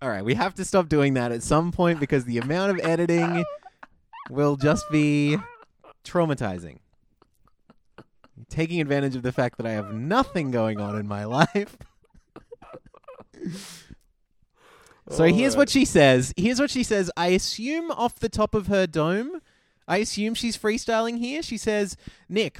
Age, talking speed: 20-39, 155 wpm